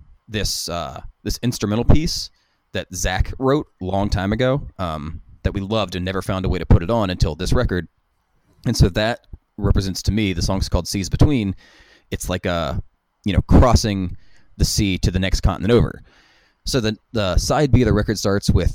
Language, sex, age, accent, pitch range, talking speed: English, male, 30-49, American, 90-105 Hz, 200 wpm